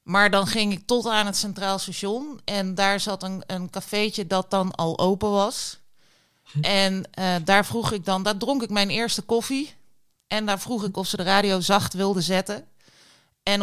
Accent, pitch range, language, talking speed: Dutch, 185-235 Hz, Dutch, 195 wpm